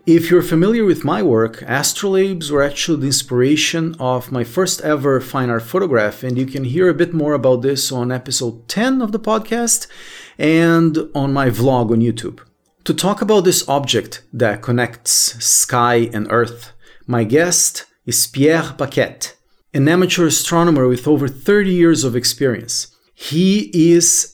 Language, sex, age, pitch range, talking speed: English, male, 40-59, 125-165 Hz, 160 wpm